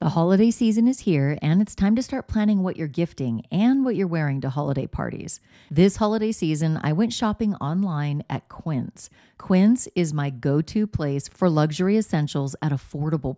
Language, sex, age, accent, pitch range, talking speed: English, female, 40-59, American, 145-190 Hz, 180 wpm